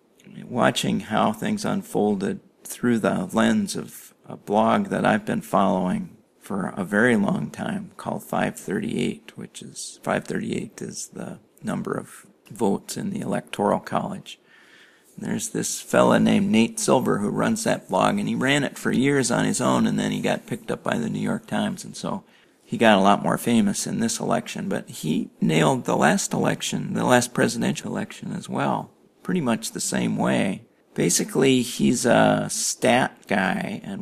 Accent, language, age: American, English, 50-69